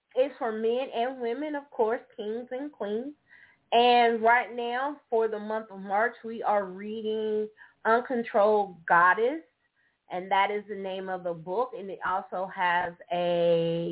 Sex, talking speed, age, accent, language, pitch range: female, 155 wpm, 20-39, American, English, 175-235 Hz